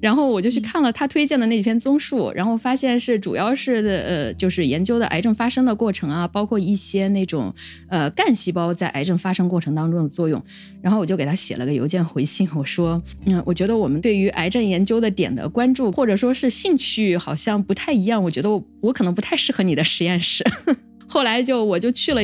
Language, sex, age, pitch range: Chinese, female, 20-39, 180-250 Hz